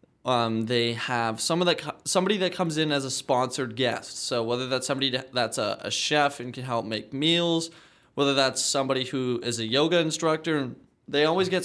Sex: male